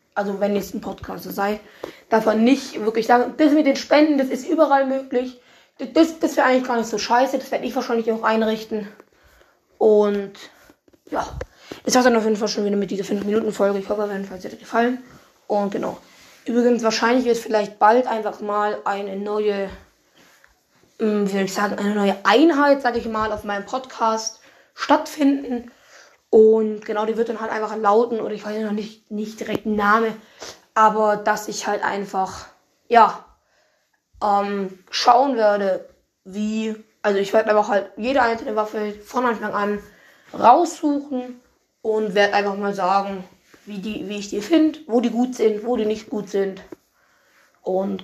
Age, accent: 20-39, German